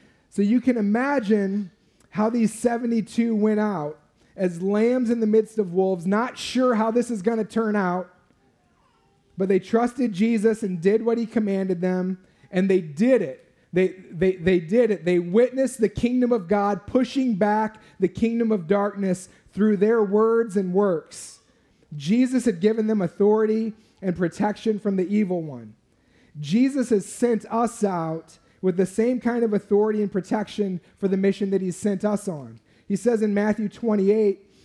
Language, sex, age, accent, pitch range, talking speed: English, male, 30-49, American, 185-225 Hz, 170 wpm